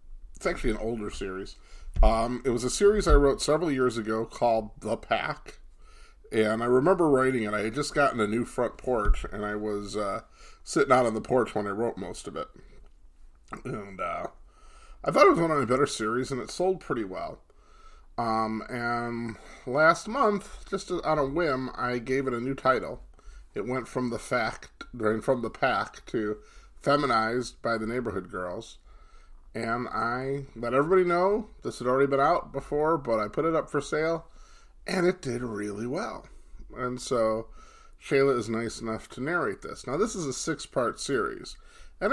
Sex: male